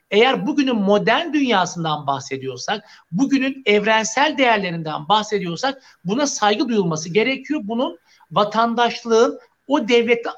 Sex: male